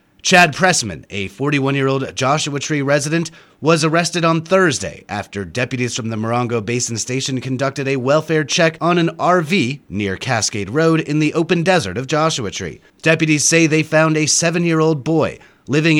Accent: American